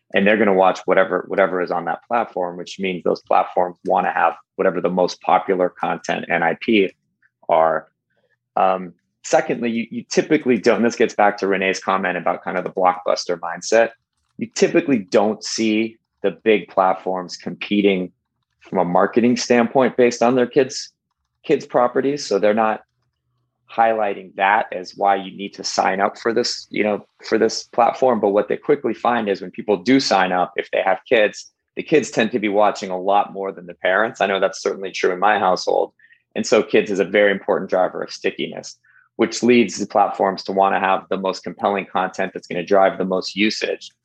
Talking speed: 200 wpm